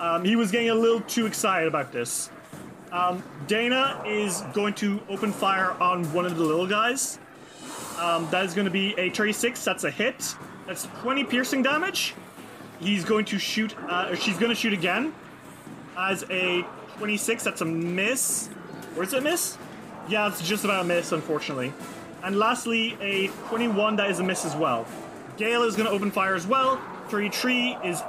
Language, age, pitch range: English, 30-49, 180-225 Hz